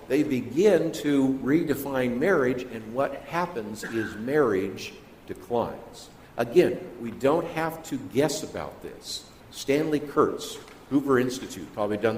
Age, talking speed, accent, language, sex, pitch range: 50-69, 125 wpm, American, English, male, 115-145 Hz